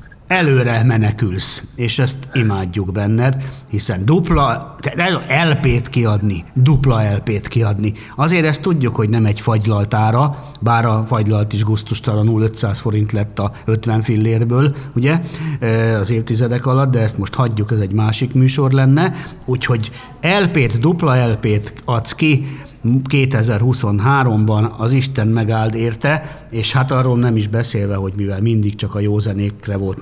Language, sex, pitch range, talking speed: Hungarian, male, 110-140 Hz, 140 wpm